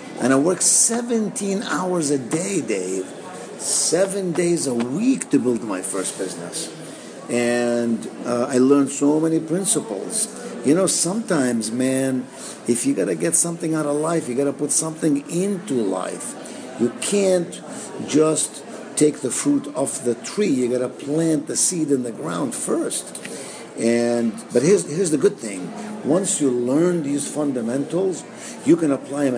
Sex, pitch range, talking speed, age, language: male, 120-160 Hz, 160 wpm, 50-69, English